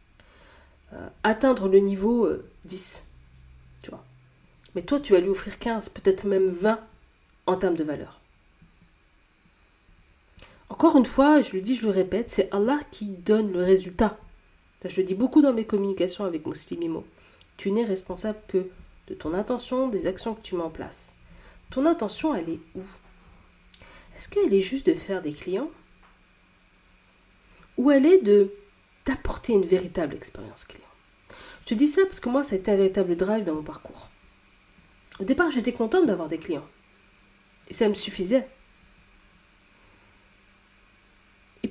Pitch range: 165-245 Hz